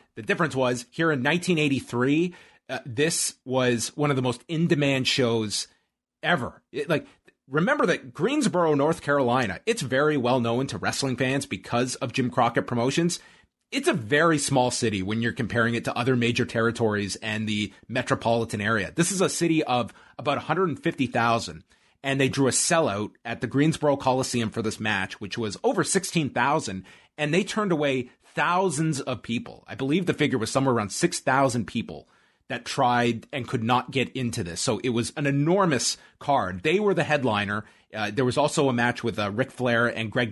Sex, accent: male, American